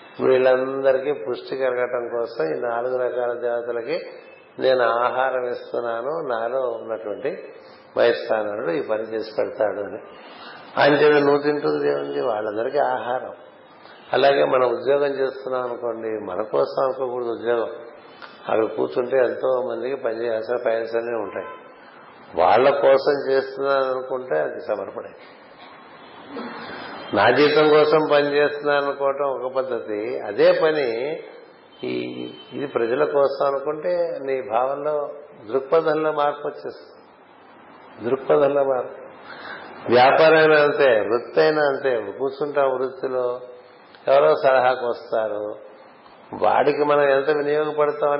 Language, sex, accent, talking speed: Telugu, male, native, 95 wpm